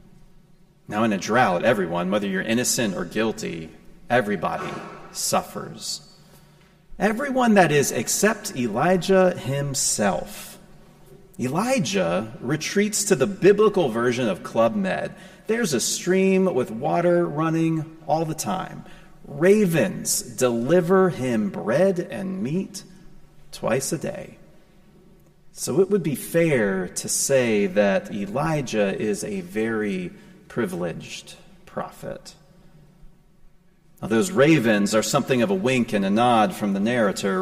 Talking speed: 115 wpm